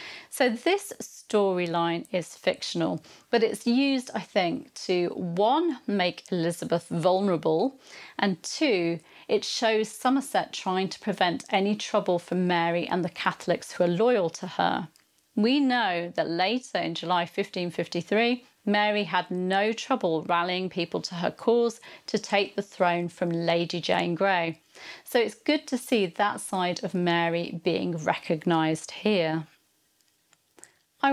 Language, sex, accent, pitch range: English, female, British, 175-235 Hz